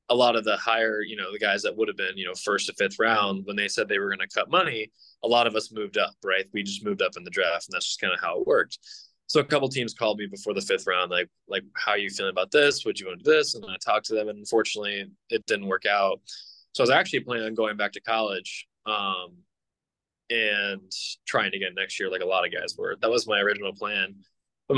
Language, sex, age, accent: English, male, 20-39, American